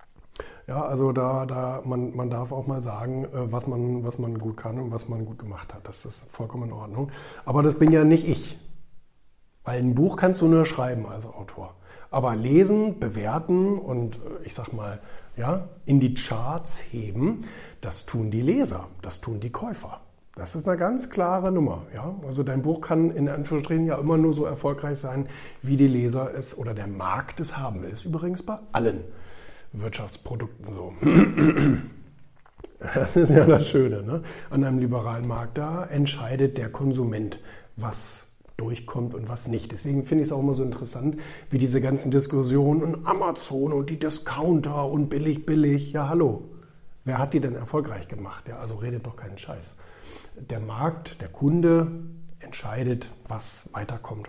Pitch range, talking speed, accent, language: 115-150 Hz, 175 wpm, German, German